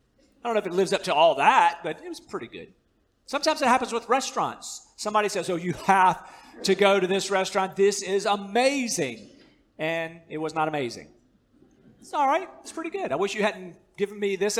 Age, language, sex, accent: 40-59, English, male, American